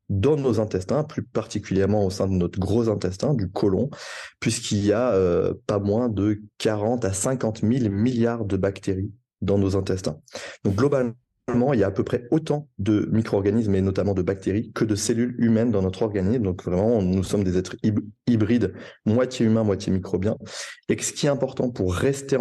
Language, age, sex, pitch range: French, 20-39, male, 95-120 Hz